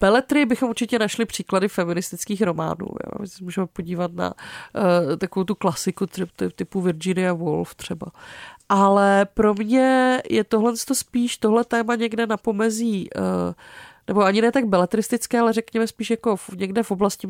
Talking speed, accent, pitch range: 155 wpm, native, 185-225 Hz